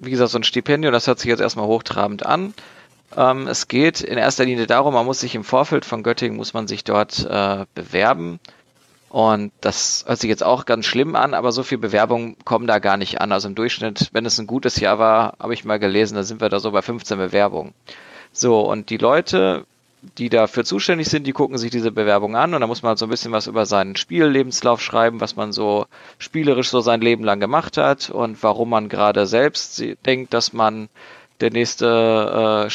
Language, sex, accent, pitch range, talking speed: German, male, German, 110-130 Hz, 220 wpm